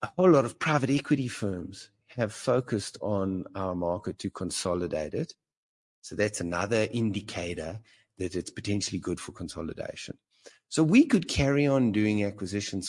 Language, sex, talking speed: English, male, 150 wpm